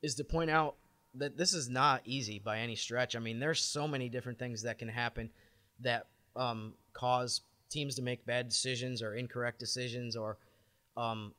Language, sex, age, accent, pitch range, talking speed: English, male, 20-39, American, 110-125 Hz, 185 wpm